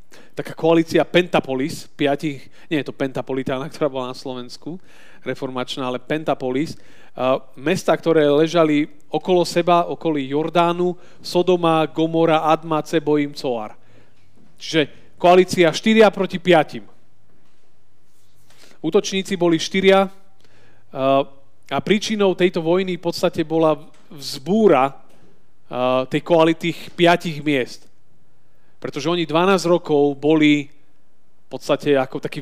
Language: Slovak